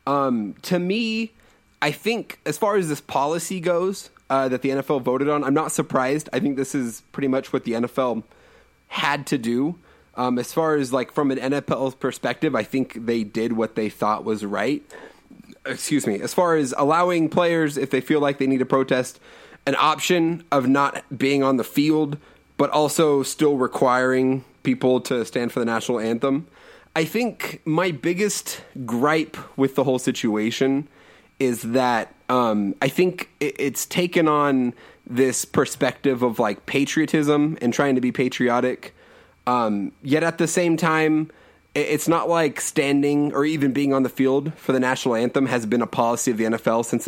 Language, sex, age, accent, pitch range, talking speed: English, male, 20-39, American, 125-155 Hz, 175 wpm